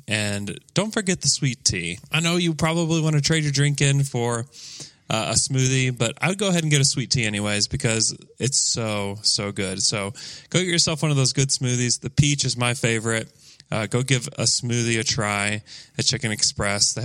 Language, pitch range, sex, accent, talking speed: English, 110-145 Hz, male, American, 215 wpm